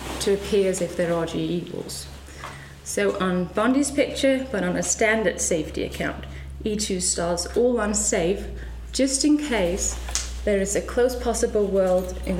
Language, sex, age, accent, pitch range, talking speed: English, female, 30-49, British, 175-220 Hz, 150 wpm